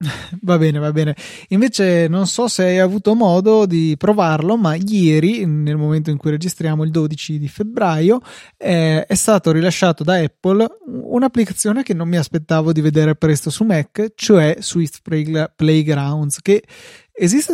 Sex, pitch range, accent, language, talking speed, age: male, 155-180 Hz, native, Italian, 155 wpm, 20-39